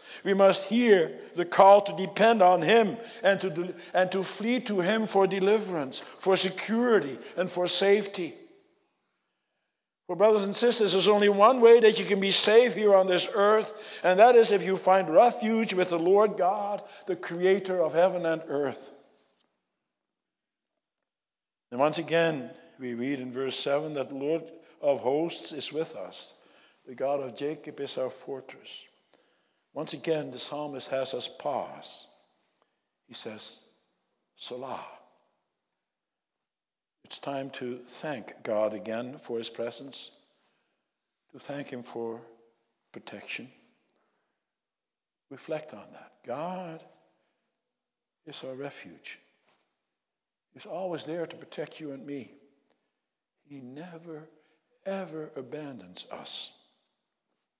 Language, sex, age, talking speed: English, male, 60-79, 130 wpm